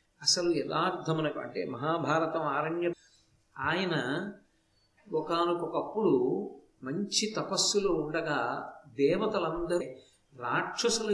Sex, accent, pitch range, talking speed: male, native, 155-200 Hz, 65 wpm